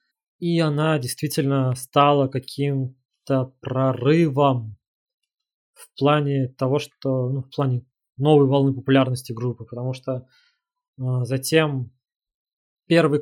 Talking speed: 100 wpm